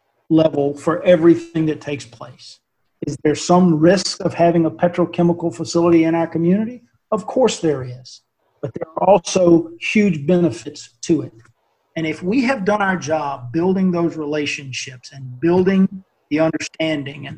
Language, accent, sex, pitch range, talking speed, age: English, American, male, 150-180 Hz, 155 wpm, 50-69